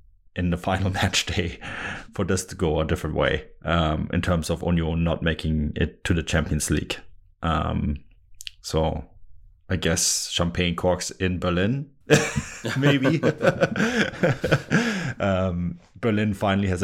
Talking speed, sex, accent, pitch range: 130 wpm, male, German, 85-95 Hz